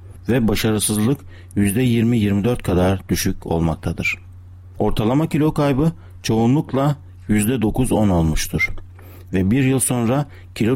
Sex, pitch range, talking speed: male, 90-120 Hz, 95 wpm